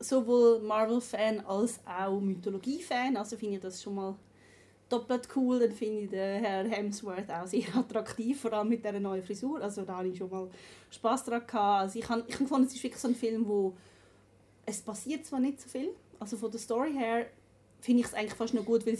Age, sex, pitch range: 30-49, female, 190-230 Hz